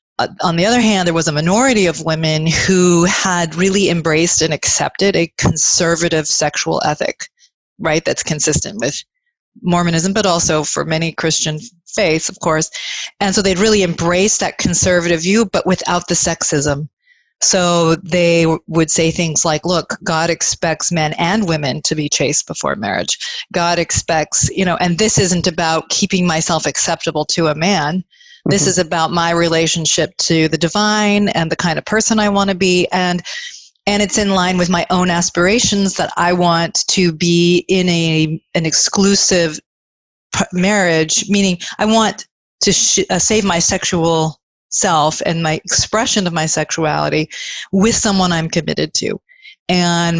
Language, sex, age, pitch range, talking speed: English, female, 30-49, 160-195 Hz, 160 wpm